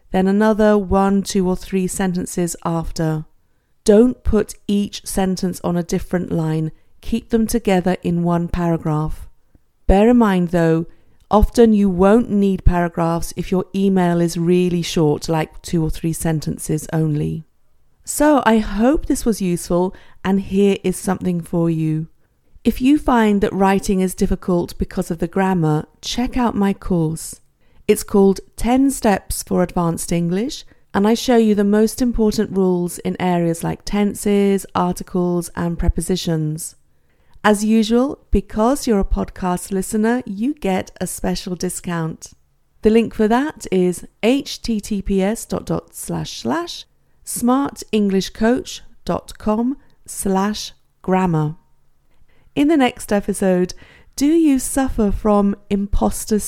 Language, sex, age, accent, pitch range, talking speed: English, female, 40-59, British, 170-215 Hz, 125 wpm